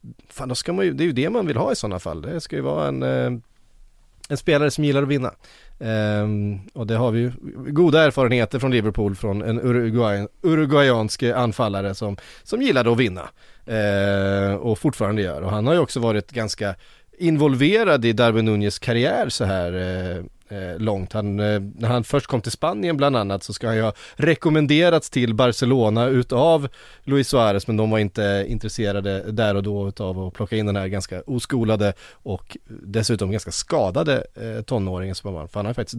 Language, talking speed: Swedish, 185 wpm